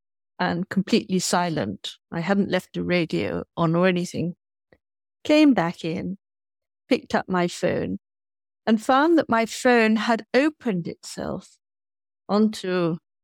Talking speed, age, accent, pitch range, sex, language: 120 wpm, 50-69, British, 175-250 Hz, female, English